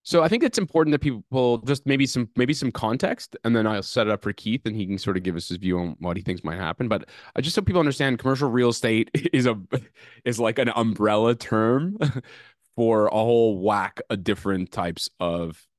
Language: English